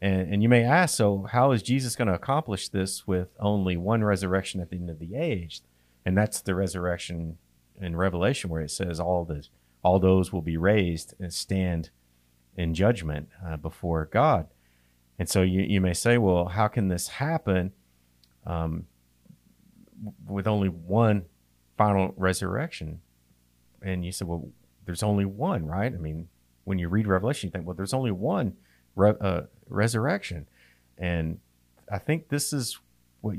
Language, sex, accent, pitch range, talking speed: English, male, American, 75-105 Hz, 165 wpm